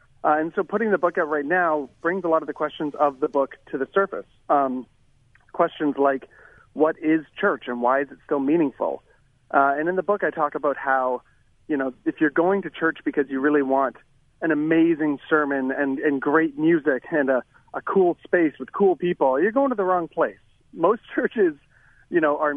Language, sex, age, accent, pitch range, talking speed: English, male, 40-59, American, 140-170 Hz, 210 wpm